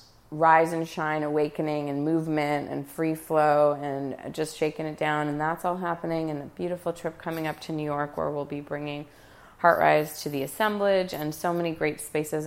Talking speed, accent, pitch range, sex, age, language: 195 wpm, American, 150-175 Hz, female, 30-49, English